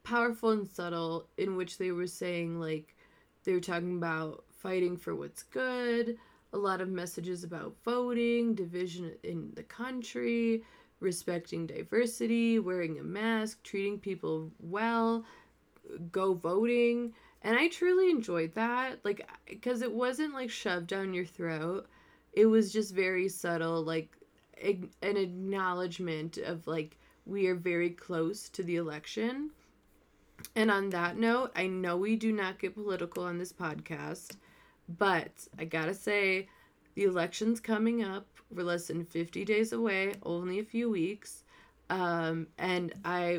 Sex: female